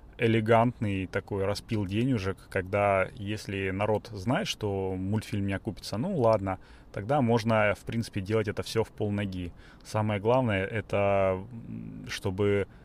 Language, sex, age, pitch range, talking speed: Russian, male, 30-49, 95-110 Hz, 125 wpm